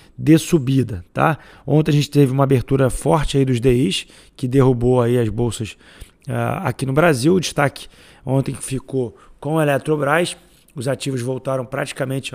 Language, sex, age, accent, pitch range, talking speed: Portuguese, male, 20-39, Brazilian, 130-145 Hz, 160 wpm